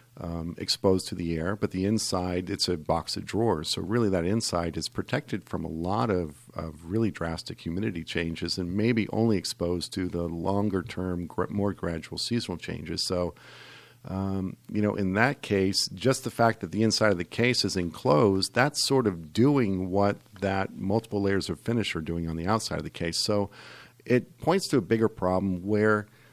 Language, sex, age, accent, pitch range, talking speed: English, male, 50-69, American, 90-120 Hz, 190 wpm